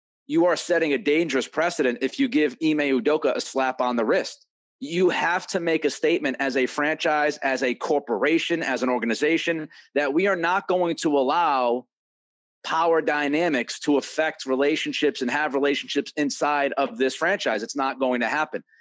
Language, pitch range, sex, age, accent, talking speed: English, 130-165 Hz, male, 30-49, American, 175 wpm